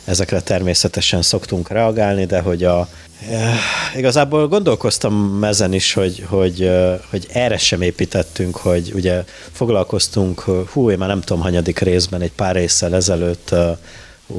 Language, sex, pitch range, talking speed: Hungarian, male, 85-105 Hz, 140 wpm